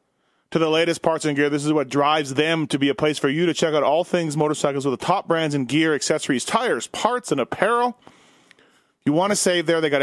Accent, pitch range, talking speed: American, 135-170 Hz, 250 wpm